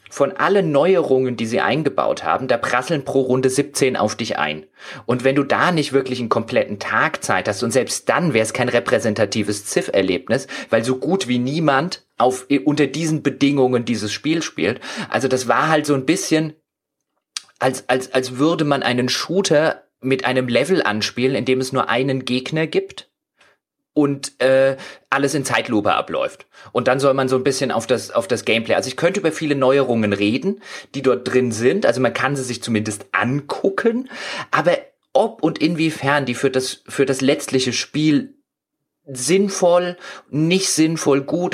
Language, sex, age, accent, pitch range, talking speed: German, male, 30-49, German, 125-150 Hz, 175 wpm